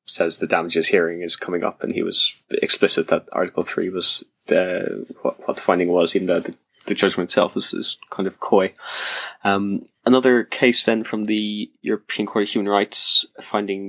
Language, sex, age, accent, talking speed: English, male, 10-29, British, 190 wpm